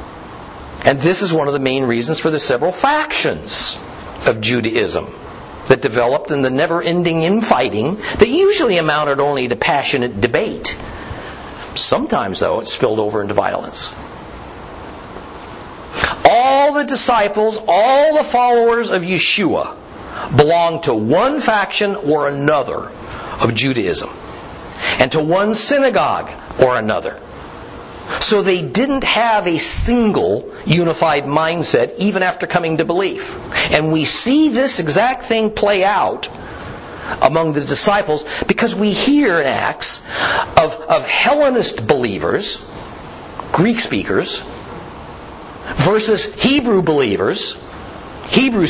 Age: 50-69